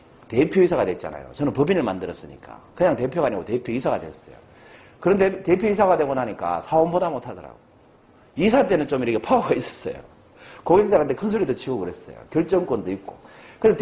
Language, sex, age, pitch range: Korean, male, 40-59, 130-210 Hz